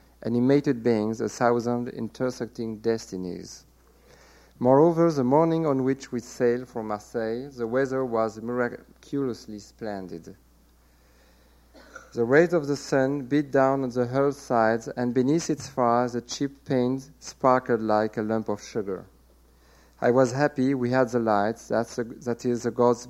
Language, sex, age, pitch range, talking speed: English, male, 50-69, 110-130 Hz, 145 wpm